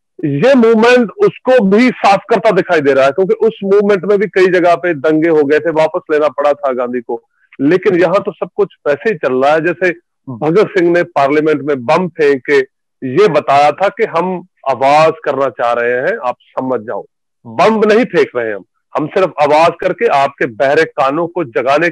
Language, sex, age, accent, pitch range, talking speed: Hindi, male, 40-59, native, 140-200 Hz, 195 wpm